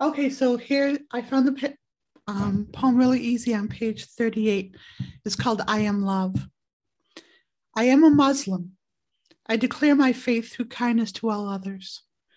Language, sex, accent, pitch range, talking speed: English, female, American, 200-245 Hz, 150 wpm